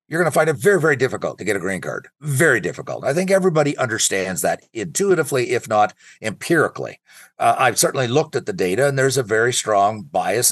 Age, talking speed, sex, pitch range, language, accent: 50-69, 210 wpm, male, 115-160 Hz, English, American